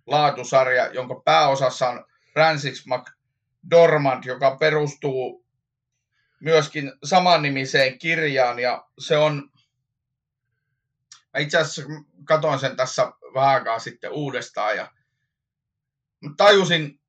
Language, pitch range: Finnish, 125-155 Hz